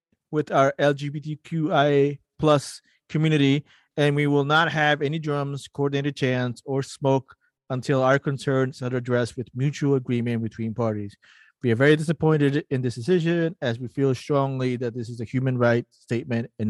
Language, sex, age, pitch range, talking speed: English, male, 30-49, 120-145 Hz, 160 wpm